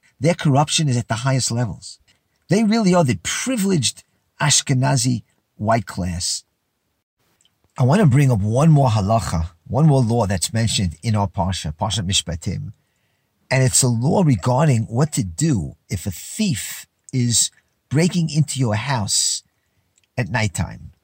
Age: 50-69